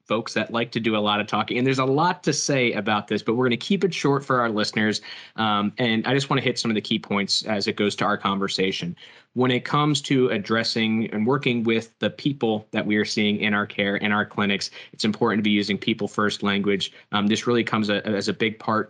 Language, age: English, 20-39